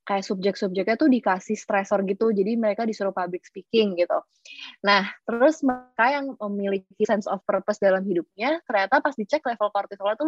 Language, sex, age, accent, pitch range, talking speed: Indonesian, female, 20-39, native, 185-240 Hz, 165 wpm